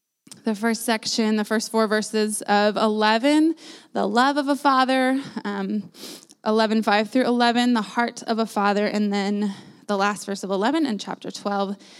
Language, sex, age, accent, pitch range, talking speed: English, female, 20-39, American, 200-235 Hz, 165 wpm